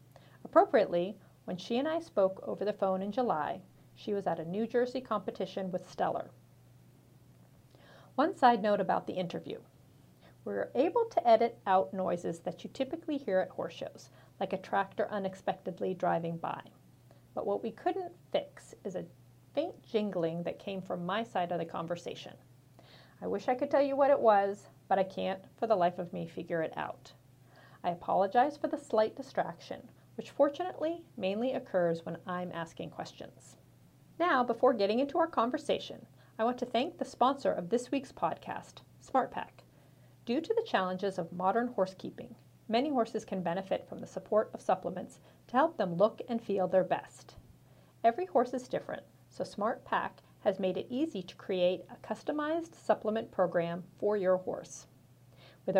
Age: 40-59